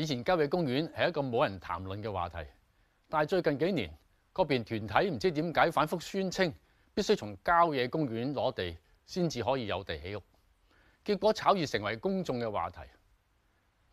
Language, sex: Chinese, male